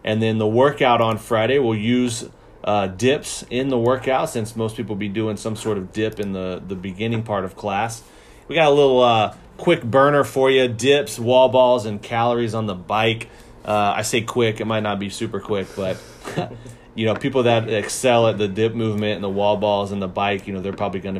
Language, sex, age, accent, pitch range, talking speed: English, male, 30-49, American, 100-120 Hz, 220 wpm